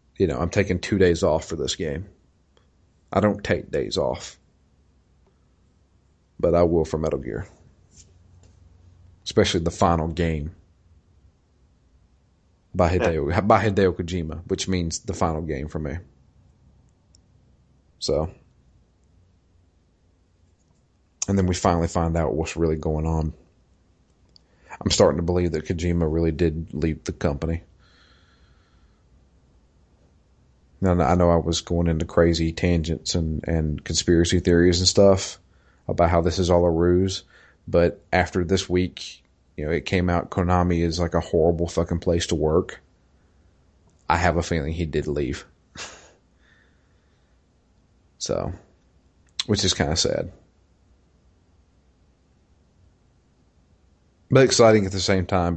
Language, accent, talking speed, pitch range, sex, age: English, American, 125 wpm, 80-90 Hz, male, 40-59